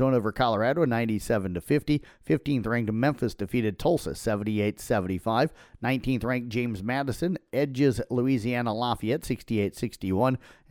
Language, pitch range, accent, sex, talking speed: English, 110-140 Hz, American, male, 95 wpm